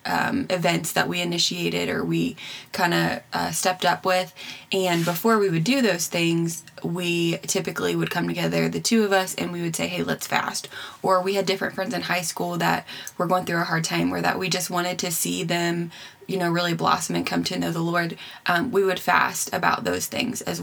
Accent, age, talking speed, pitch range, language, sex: American, 20-39, 220 wpm, 140-195 Hz, English, female